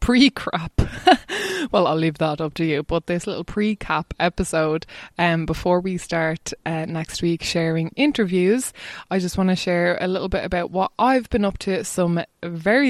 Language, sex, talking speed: English, female, 190 wpm